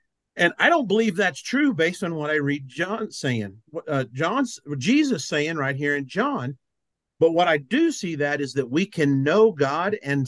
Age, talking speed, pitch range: 50-69, 205 wpm, 130-175 Hz